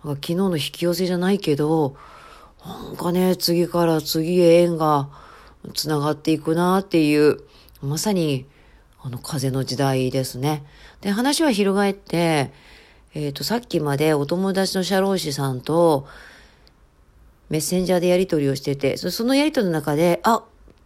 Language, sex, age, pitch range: Japanese, female, 40-59, 140-190 Hz